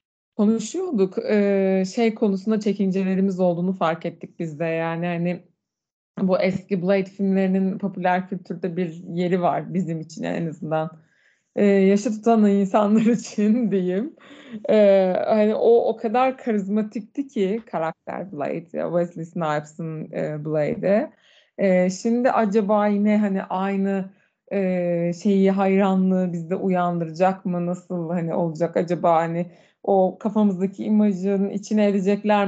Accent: native